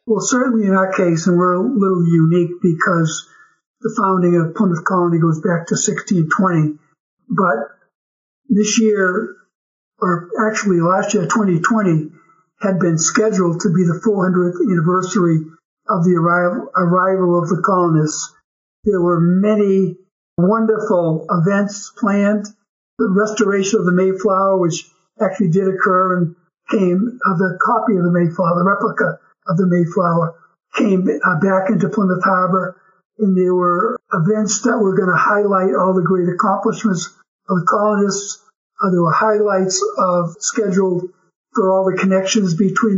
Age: 60-79